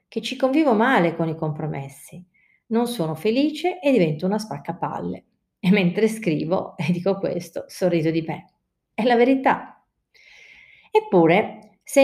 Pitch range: 170-235 Hz